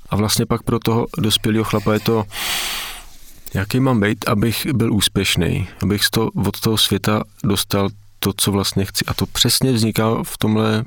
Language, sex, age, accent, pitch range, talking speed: Czech, male, 40-59, native, 95-110 Hz, 175 wpm